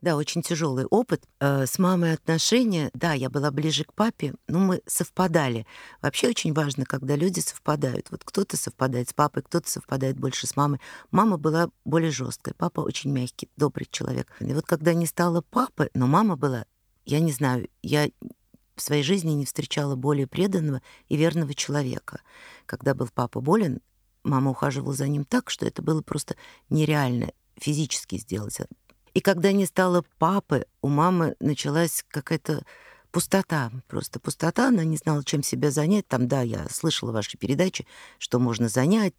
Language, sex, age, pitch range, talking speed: Russian, female, 50-69, 130-170 Hz, 165 wpm